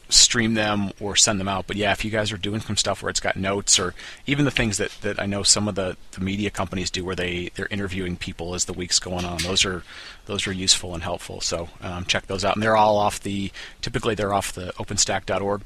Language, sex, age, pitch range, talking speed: English, male, 30-49, 95-110 Hz, 255 wpm